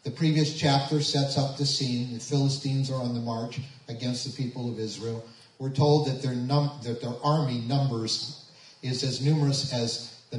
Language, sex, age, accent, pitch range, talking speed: English, male, 40-59, American, 120-150 Hz, 185 wpm